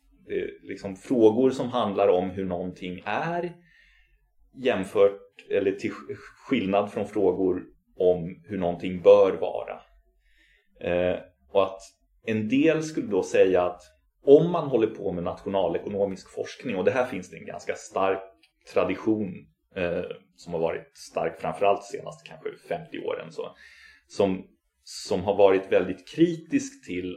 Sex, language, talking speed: male, Swedish, 140 wpm